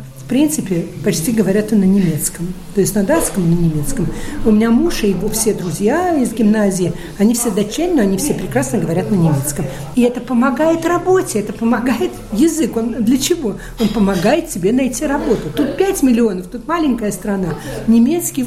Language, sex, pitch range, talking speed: Russian, female, 190-260 Hz, 175 wpm